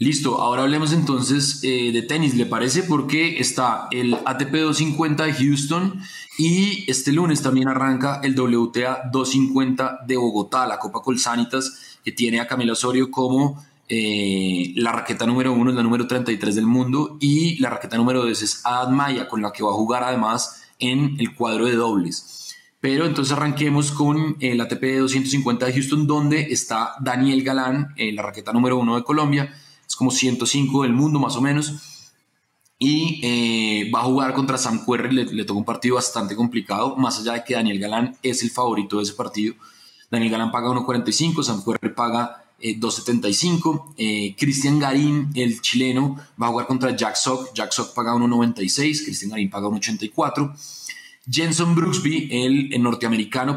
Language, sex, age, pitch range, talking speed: Spanish, male, 20-39, 120-140 Hz, 170 wpm